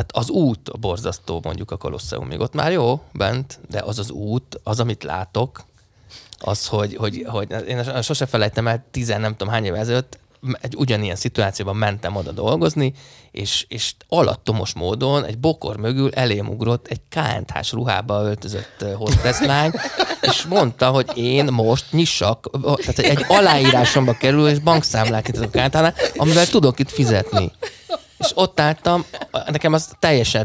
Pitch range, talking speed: 110-135 Hz, 150 wpm